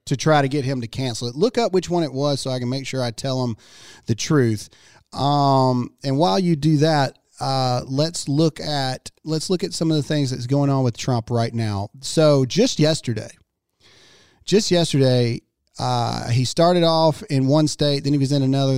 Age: 40-59